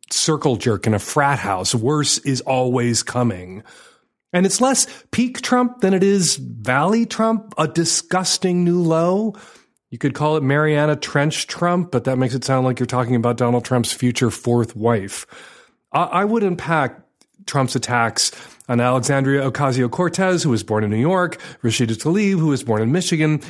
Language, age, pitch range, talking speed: English, 30-49, 120-175 Hz, 170 wpm